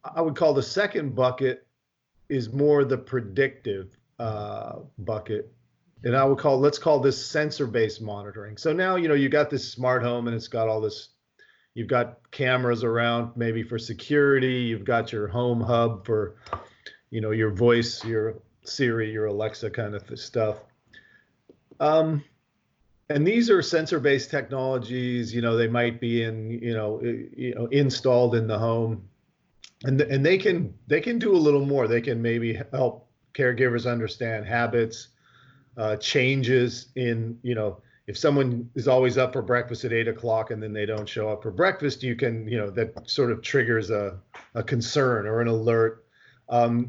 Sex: male